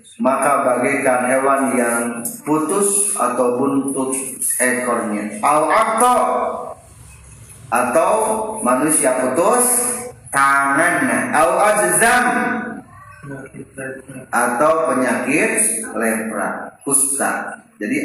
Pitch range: 125-160 Hz